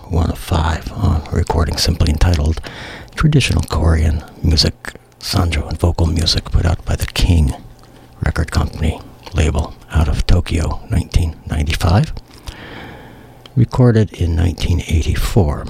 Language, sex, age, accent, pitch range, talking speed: English, male, 60-79, American, 80-100 Hz, 115 wpm